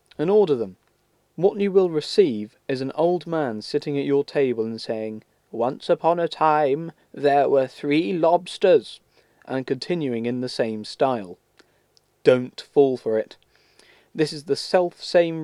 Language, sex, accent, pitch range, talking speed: English, male, British, 125-165 Hz, 150 wpm